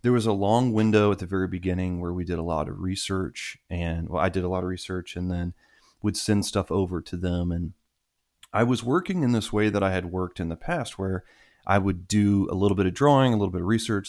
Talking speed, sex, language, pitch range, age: 255 wpm, male, English, 90-105 Hz, 30-49